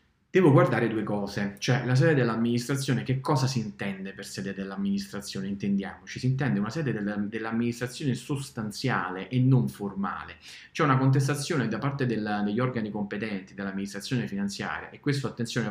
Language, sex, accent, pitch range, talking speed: Italian, male, native, 100-130 Hz, 145 wpm